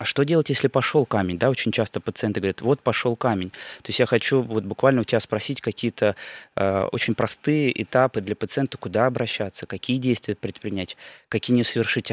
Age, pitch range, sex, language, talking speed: 20-39, 100-120 Hz, male, Russian, 190 wpm